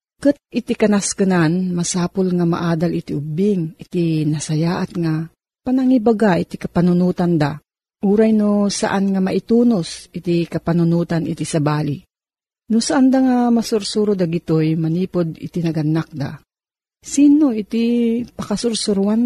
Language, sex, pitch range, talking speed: Filipino, female, 165-230 Hz, 115 wpm